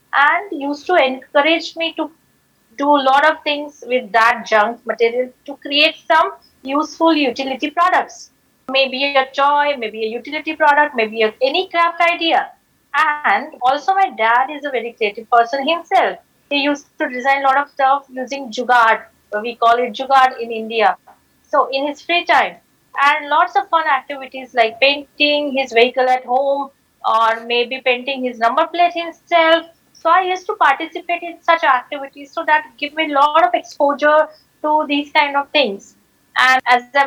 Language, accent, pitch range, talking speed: English, Indian, 250-305 Hz, 170 wpm